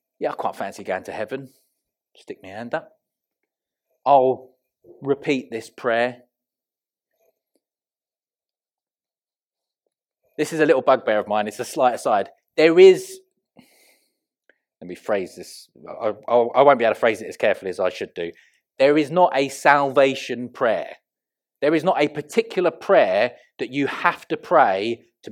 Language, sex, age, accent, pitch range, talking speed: English, male, 30-49, British, 135-195 Hz, 155 wpm